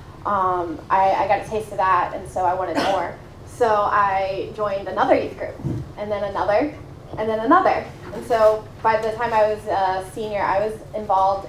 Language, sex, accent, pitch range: English, female, American, 190-220 Hz